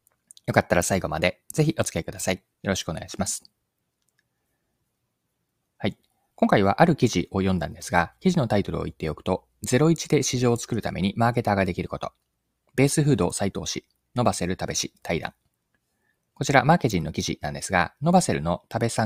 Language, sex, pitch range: Japanese, male, 90-135 Hz